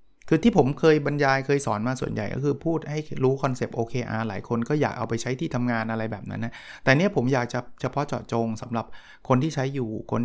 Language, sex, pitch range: Thai, male, 110-135 Hz